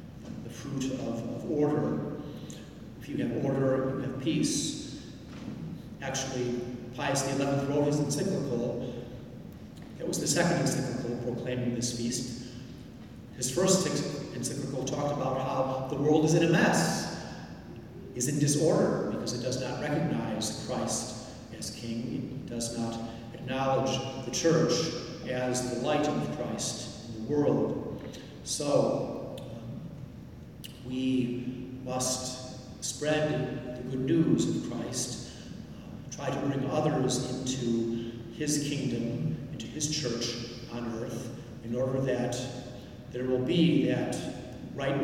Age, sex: 40-59, male